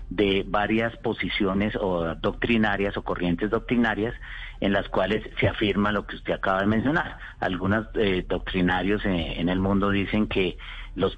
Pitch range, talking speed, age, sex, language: 85-100 Hz, 155 wpm, 40-59, male, Spanish